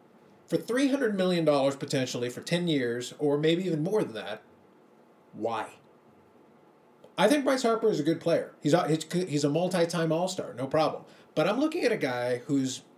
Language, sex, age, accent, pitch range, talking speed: English, male, 30-49, American, 145-180 Hz, 170 wpm